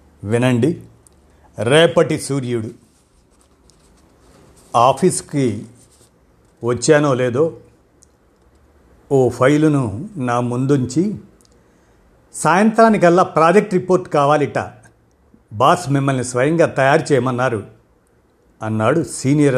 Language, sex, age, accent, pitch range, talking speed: Telugu, male, 50-69, native, 110-155 Hz, 65 wpm